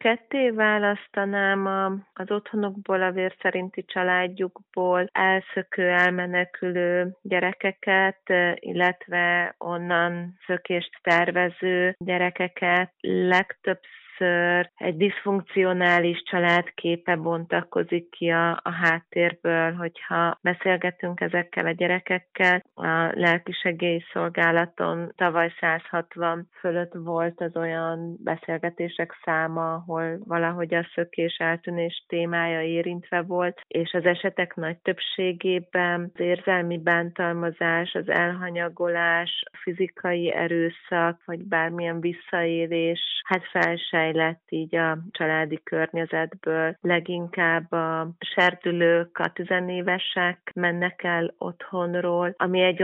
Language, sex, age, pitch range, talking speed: Hungarian, female, 30-49, 170-180 Hz, 95 wpm